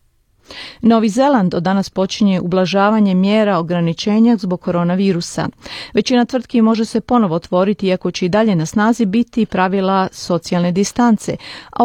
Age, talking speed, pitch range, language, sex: 40-59, 135 wpm, 180-225 Hz, Croatian, female